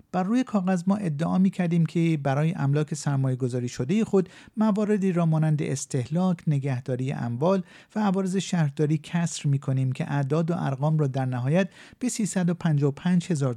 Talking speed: 155 wpm